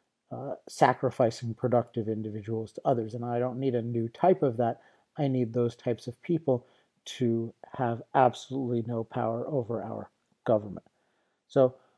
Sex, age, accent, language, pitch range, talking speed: male, 40-59, American, English, 120-135 Hz, 150 wpm